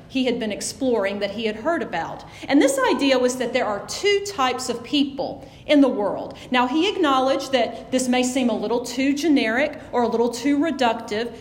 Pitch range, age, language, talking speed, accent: 240-300 Hz, 40-59, English, 205 wpm, American